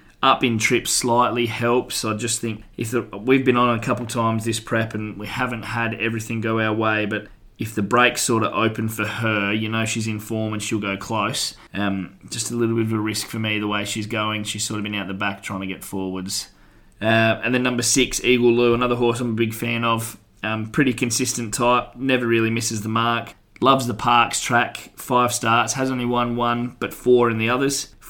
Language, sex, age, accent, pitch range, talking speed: English, male, 20-39, Australian, 110-125 Hz, 225 wpm